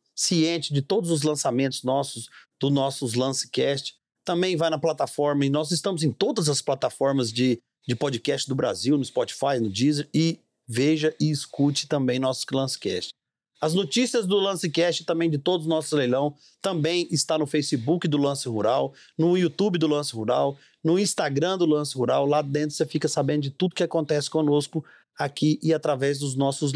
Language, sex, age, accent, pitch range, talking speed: Portuguese, male, 40-59, Brazilian, 140-165 Hz, 175 wpm